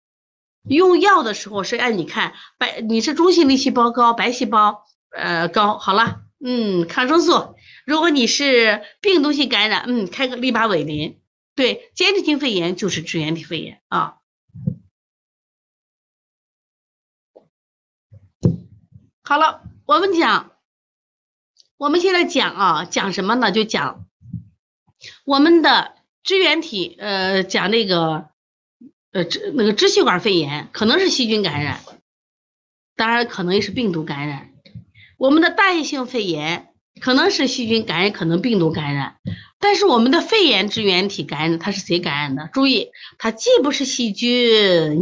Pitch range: 190-305 Hz